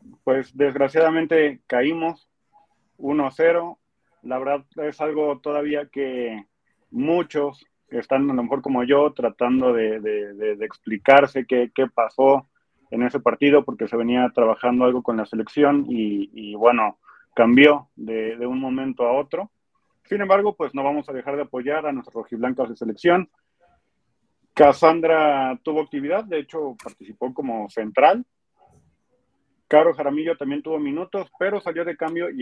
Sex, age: male, 30-49